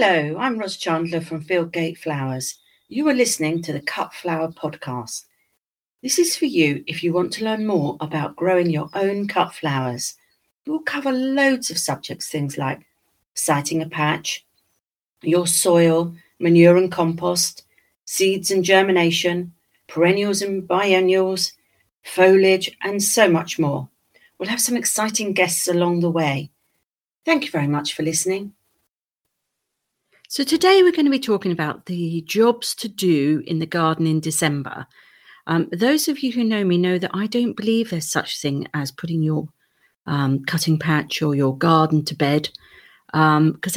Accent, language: British, English